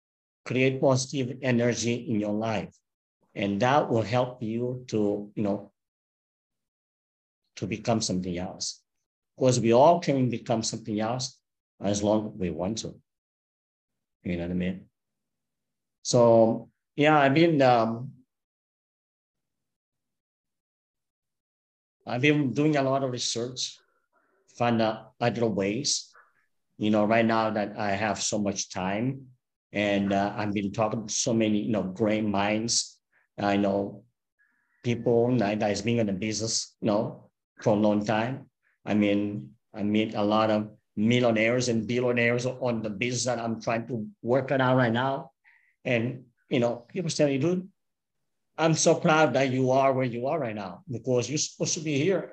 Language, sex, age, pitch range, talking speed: English, male, 50-69, 105-130 Hz, 155 wpm